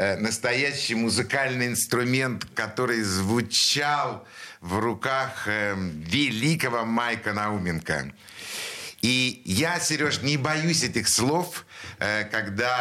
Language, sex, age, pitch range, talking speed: Russian, male, 60-79, 95-120 Hz, 85 wpm